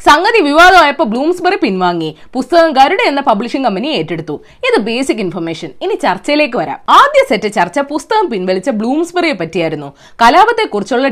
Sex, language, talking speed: female, Malayalam, 130 wpm